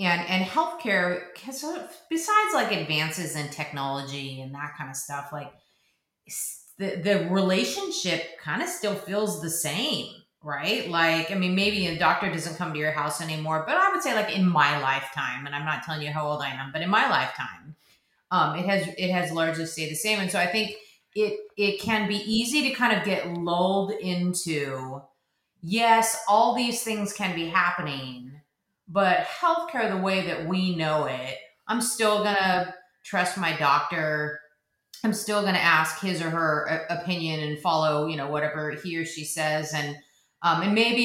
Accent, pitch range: American, 155-195 Hz